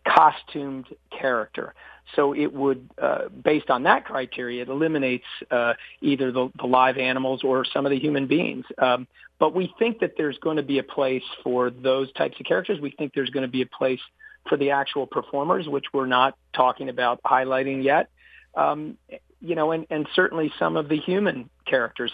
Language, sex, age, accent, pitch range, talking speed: English, male, 40-59, American, 125-145 Hz, 190 wpm